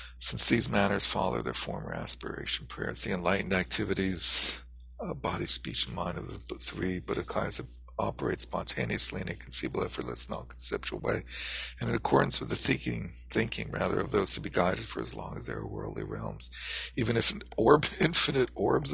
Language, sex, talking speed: English, male, 180 wpm